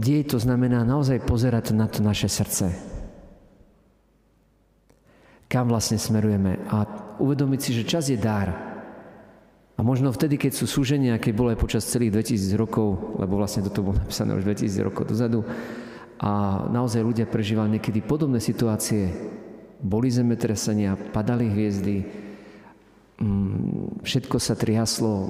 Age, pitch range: 50-69, 105-120 Hz